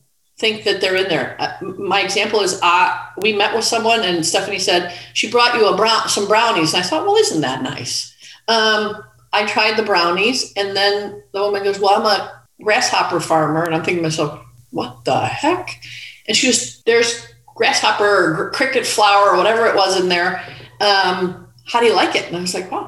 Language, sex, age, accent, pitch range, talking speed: English, female, 40-59, American, 170-240 Hz, 205 wpm